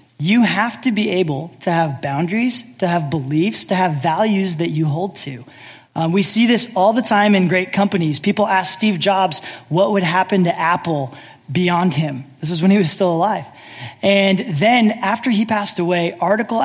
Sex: male